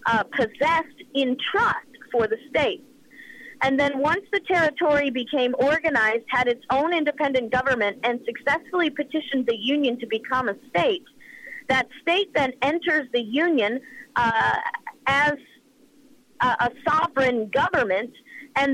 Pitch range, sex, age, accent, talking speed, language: 235-300 Hz, female, 40-59, American, 130 wpm, English